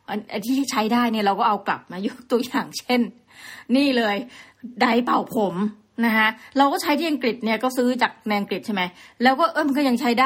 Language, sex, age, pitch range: Thai, female, 20-39, 210-260 Hz